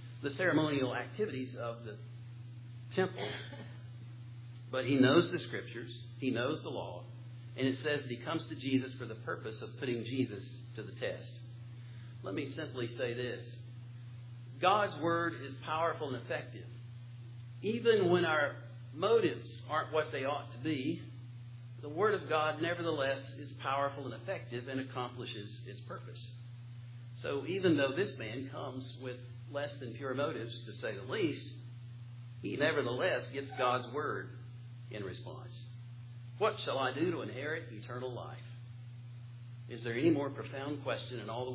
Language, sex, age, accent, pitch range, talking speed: English, male, 50-69, American, 120-135 Hz, 150 wpm